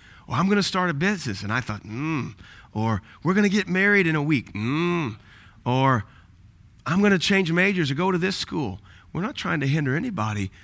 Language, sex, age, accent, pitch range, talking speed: English, male, 30-49, American, 95-130 Hz, 215 wpm